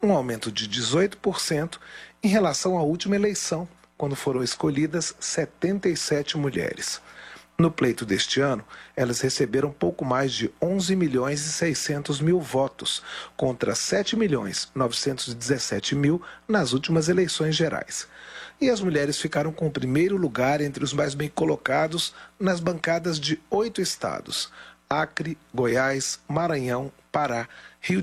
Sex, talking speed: male, 125 wpm